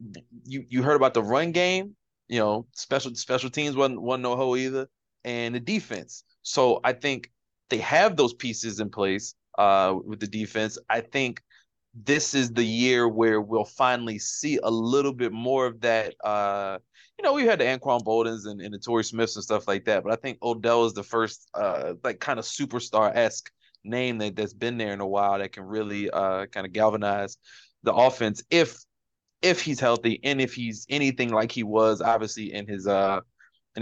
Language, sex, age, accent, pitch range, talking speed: English, male, 30-49, American, 110-130 Hz, 195 wpm